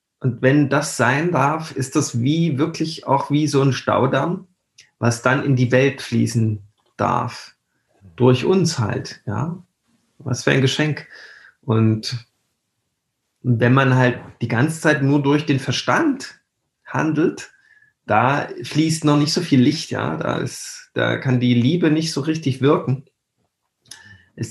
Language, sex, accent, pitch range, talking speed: German, male, German, 120-150 Hz, 145 wpm